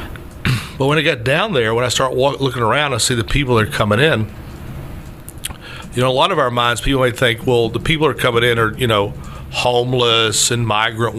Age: 50-69